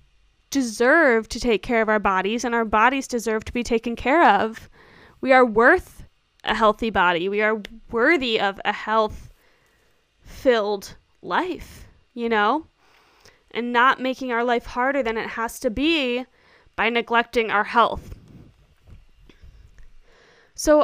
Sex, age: female, 20-39